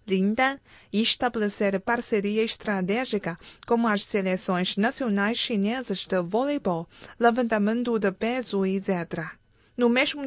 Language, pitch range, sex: Chinese, 190-230 Hz, female